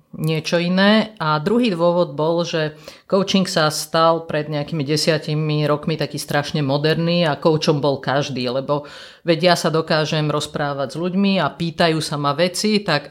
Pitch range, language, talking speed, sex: 150-175 Hz, Slovak, 160 wpm, female